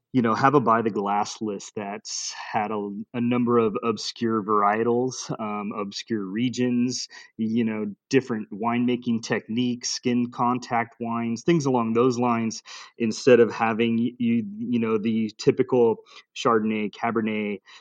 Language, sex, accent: English, male, American